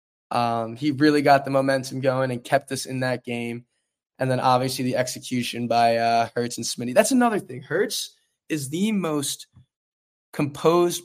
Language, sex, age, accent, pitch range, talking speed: English, male, 20-39, American, 125-150 Hz, 170 wpm